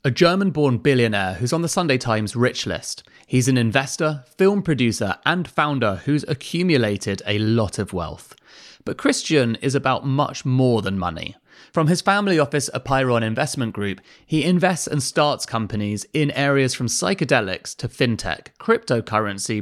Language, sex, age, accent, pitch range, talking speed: English, male, 30-49, British, 105-150 Hz, 155 wpm